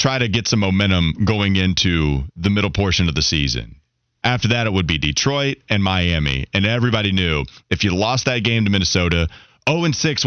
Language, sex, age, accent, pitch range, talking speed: English, male, 30-49, American, 95-140 Hz, 185 wpm